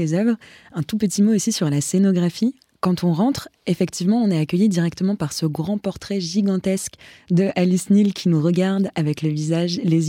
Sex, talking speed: female, 190 wpm